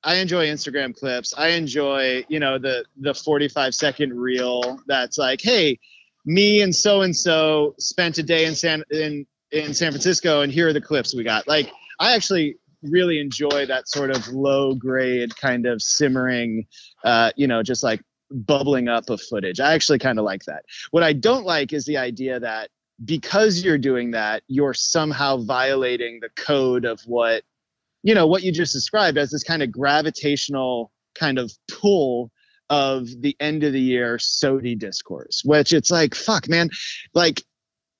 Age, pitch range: 30-49, 125-160 Hz